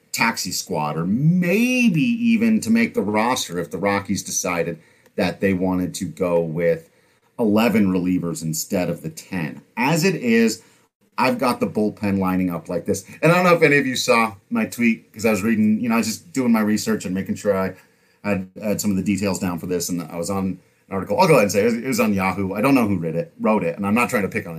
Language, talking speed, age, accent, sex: English, 245 wpm, 40-59, American, male